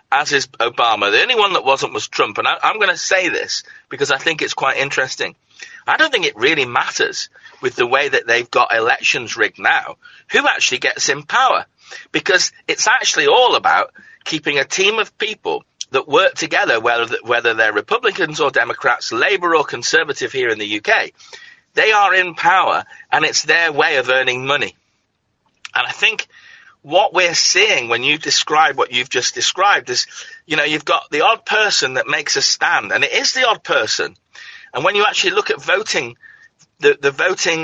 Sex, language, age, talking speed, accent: male, English, 40-59, 190 wpm, British